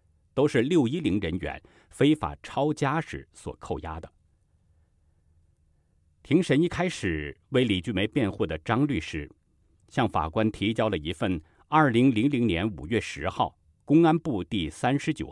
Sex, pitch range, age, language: male, 80-115 Hz, 50-69, Chinese